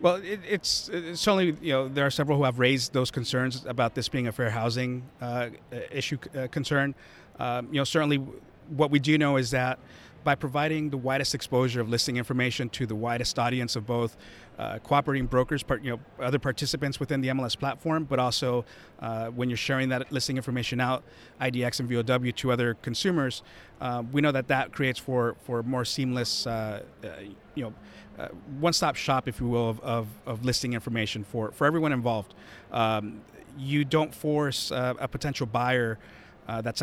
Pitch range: 120-140 Hz